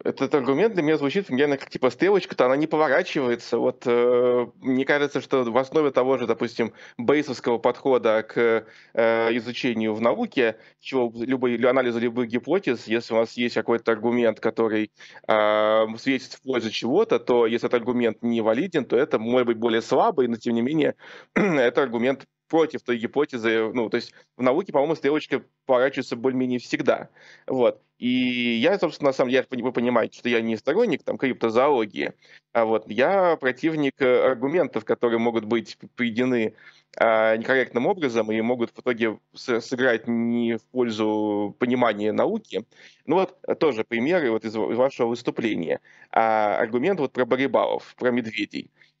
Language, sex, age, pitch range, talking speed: Russian, male, 20-39, 115-130 Hz, 155 wpm